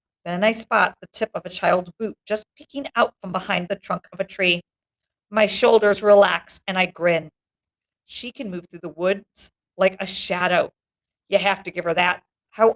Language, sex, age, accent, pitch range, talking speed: English, female, 50-69, American, 195-240 Hz, 195 wpm